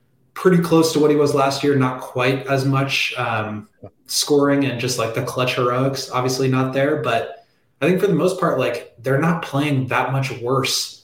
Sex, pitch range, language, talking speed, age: male, 120-135 Hz, English, 200 wpm, 20-39